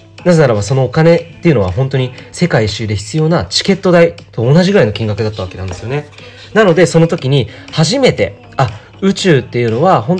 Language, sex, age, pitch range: Japanese, male, 30-49, 110-180 Hz